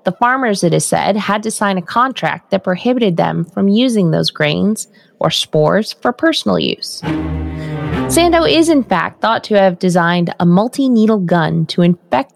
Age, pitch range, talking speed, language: 20-39, 175-210 Hz, 175 wpm, English